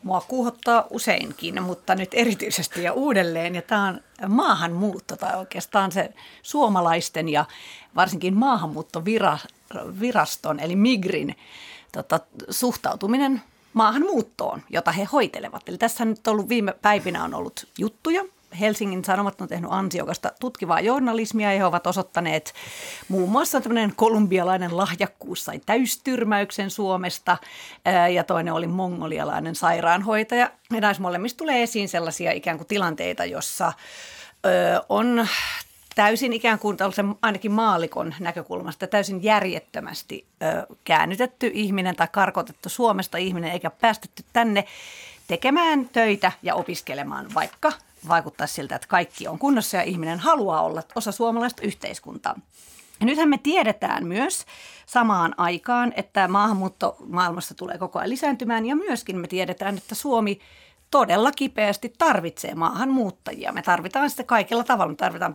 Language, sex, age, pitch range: Finnish, female, 40-59, 180-235 Hz